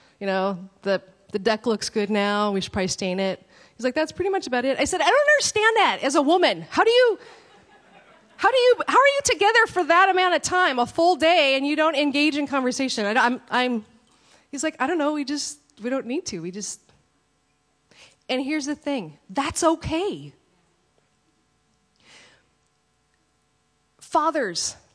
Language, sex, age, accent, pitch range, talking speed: English, female, 30-49, American, 195-295 Hz, 180 wpm